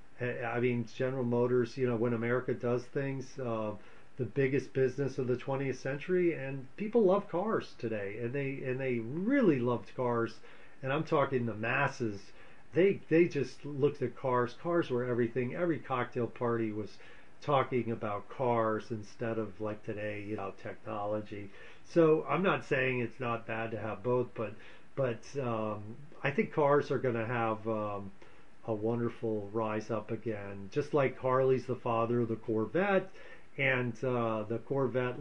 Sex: male